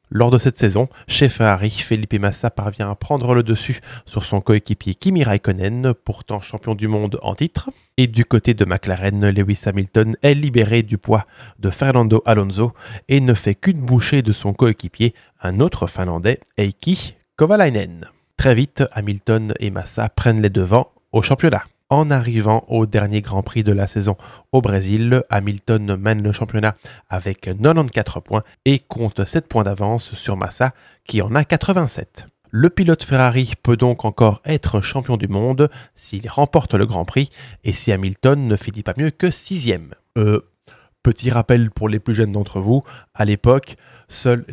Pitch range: 105-130 Hz